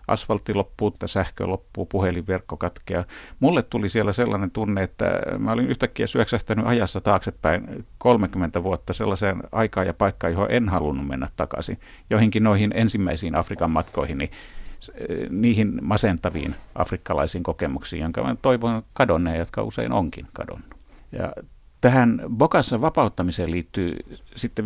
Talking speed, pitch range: 130 wpm, 90-115 Hz